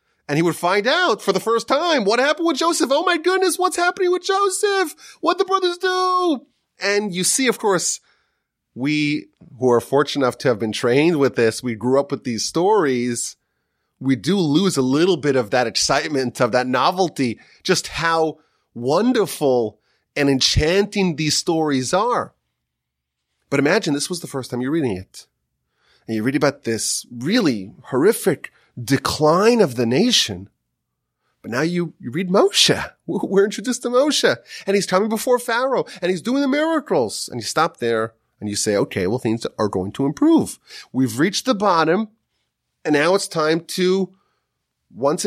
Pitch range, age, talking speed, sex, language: 125-205 Hz, 30-49, 175 wpm, male, English